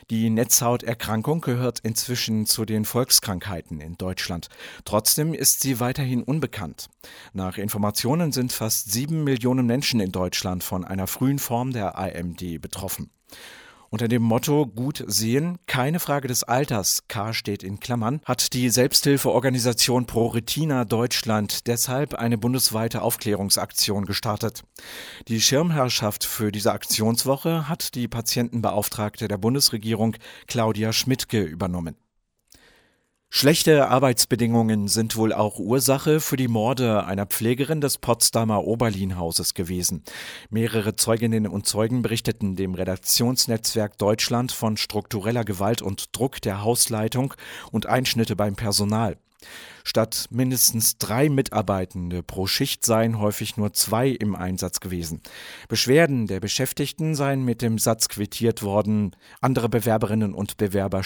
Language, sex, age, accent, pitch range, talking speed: English, male, 50-69, German, 105-125 Hz, 125 wpm